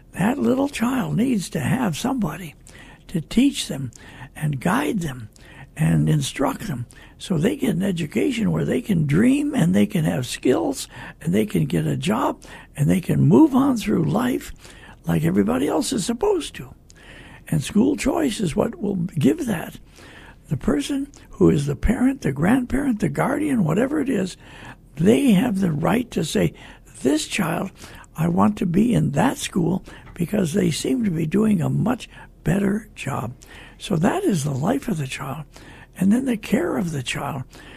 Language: English